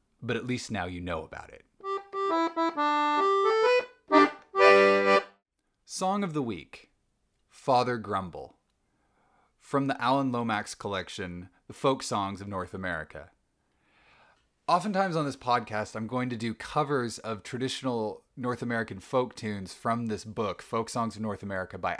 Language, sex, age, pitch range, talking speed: English, male, 30-49, 105-135 Hz, 135 wpm